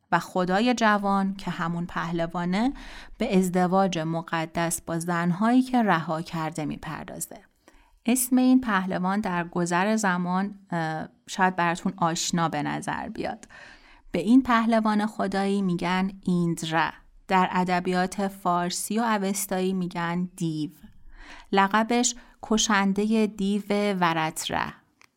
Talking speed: 105 wpm